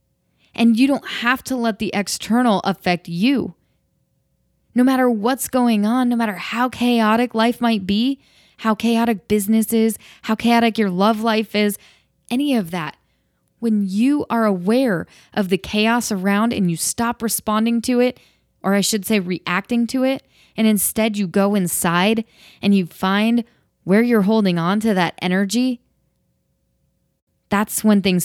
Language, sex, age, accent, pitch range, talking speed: English, female, 20-39, American, 185-235 Hz, 155 wpm